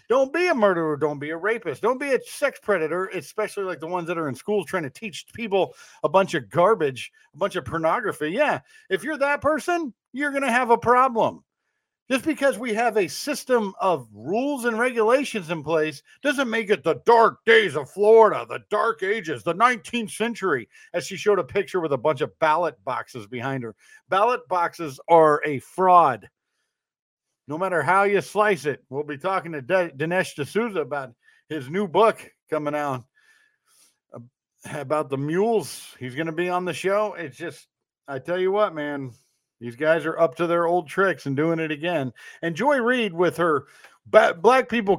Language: English